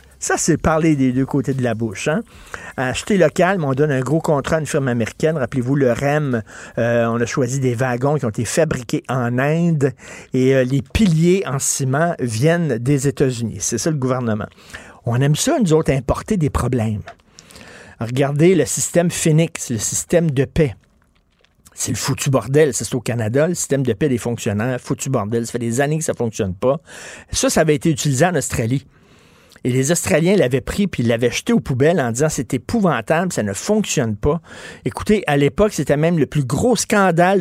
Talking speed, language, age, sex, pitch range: 200 wpm, French, 50-69, male, 125-170 Hz